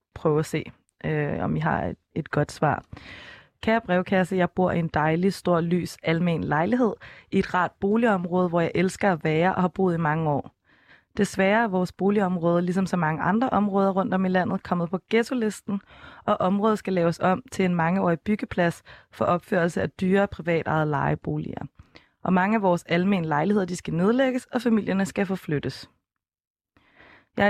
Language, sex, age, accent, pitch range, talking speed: Danish, female, 20-39, native, 170-205 Hz, 180 wpm